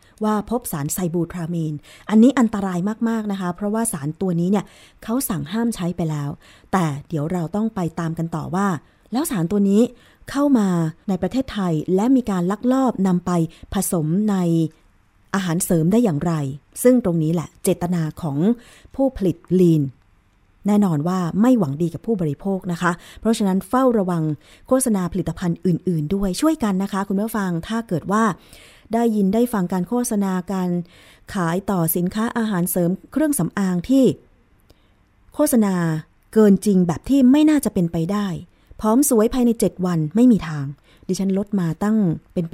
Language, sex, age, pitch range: Thai, female, 20-39, 165-215 Hz